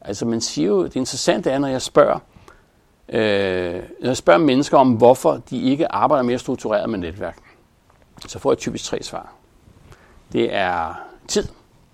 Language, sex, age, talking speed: Danish, male, 60-79, 165 wpm